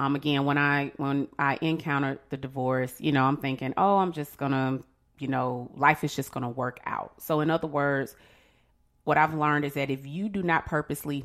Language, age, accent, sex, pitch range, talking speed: English, 30-49, American, female, 130-150 Hz, 220 wpm